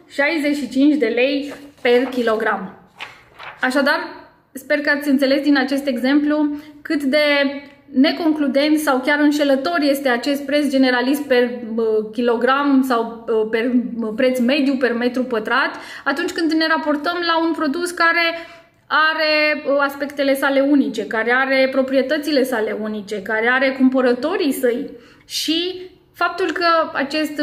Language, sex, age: Romanian, female, 20-39